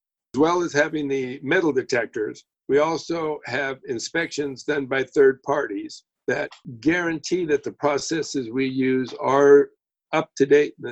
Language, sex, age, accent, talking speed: English, male, 60-79, American, 145 wpm